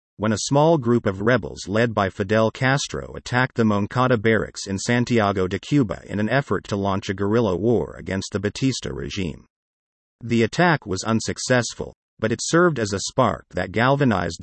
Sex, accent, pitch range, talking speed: male, American, 95-125 Hz, 175 wpm